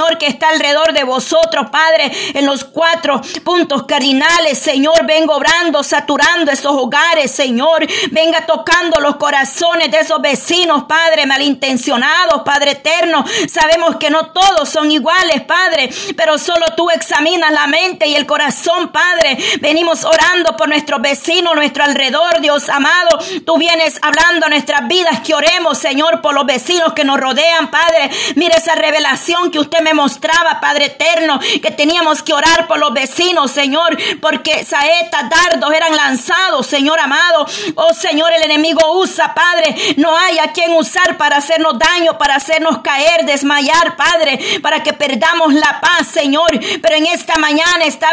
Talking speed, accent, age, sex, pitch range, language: 155 wpm, American, 40-59, female, 295-335 Hz, Spanish